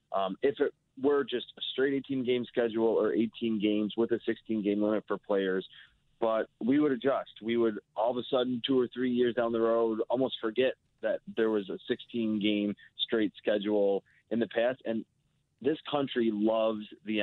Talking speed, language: 190 wpm, English